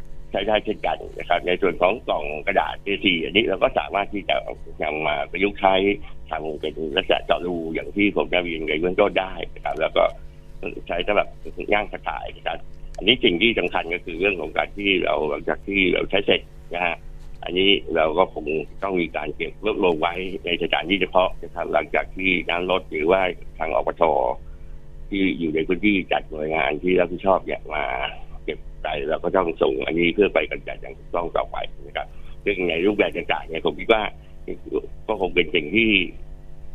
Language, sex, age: Thai, male, 60-79